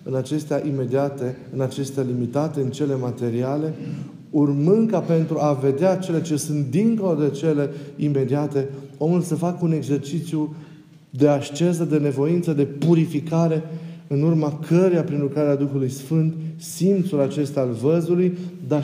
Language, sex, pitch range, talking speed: Romanian, male, 140-175 Hz, 140 wpm